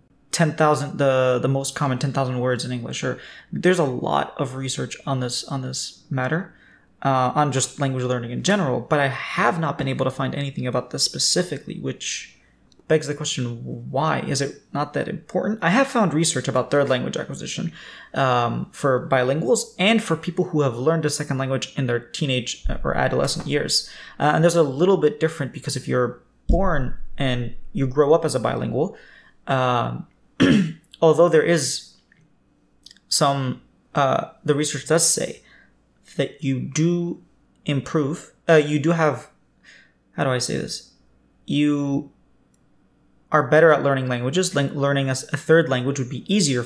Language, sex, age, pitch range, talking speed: English, male, 20-39, 130-160 Hz, 165 wpm